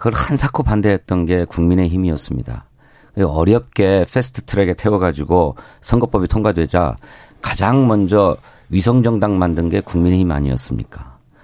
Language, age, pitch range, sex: Korean, 40-59, 85-110 Hz, male